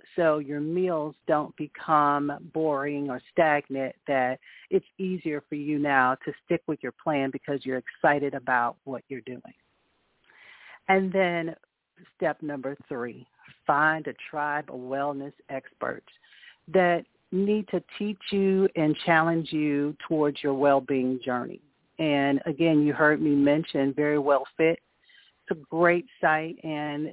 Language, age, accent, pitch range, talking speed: English, 40-59, American, 140-165 Hz, 140 wpm